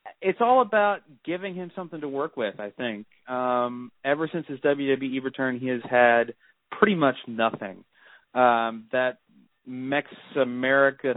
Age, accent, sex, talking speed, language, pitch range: 30-49, American, male, 145 wpm, English, 125-170 Hz